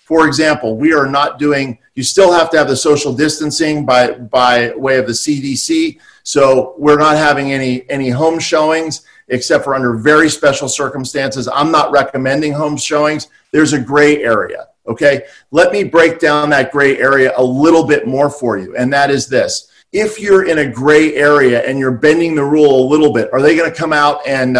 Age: 40-59